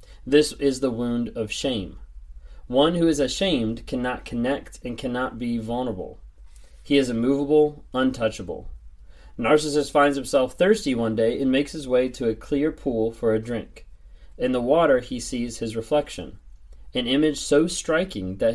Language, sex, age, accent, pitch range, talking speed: English, male, 30-49, American, 115-150 Hz, 160 wpm